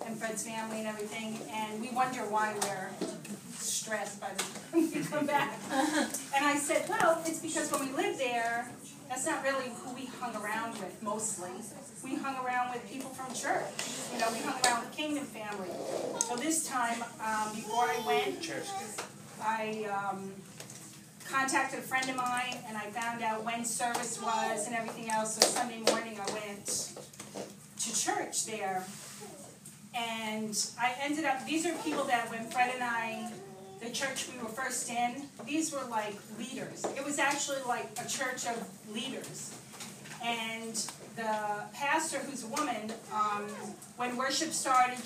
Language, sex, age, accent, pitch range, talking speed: English, female, 30-49, American, 215-265 Hz, 165 wpm